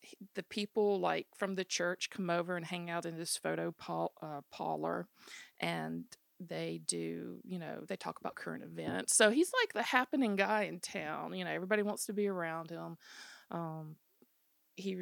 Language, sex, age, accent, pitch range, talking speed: English, female, 40-59, American, 165-210 Hz, 180 wpm